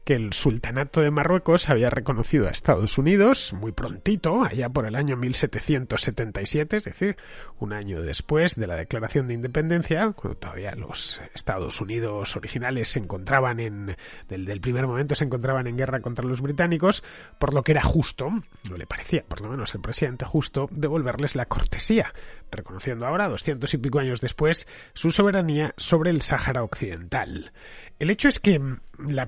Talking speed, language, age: 165 wpm, Spanish, 30-49